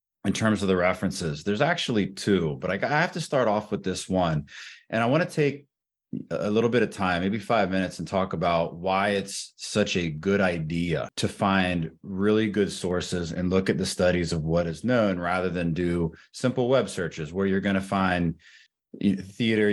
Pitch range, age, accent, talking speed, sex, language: 85-105 Hz, 30-49, American, 200 wpm, male, English